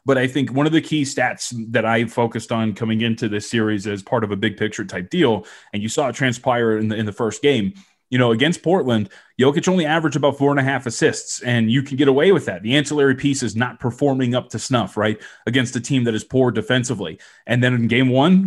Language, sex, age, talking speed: English, male, 30-49, 245 wpm